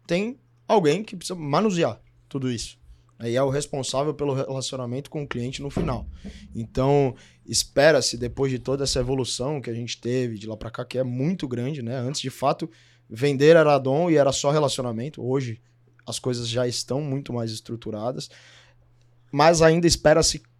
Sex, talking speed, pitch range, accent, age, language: male, 170 wpm, 120-150 Hz, Brazilian, 20-39, Portuguese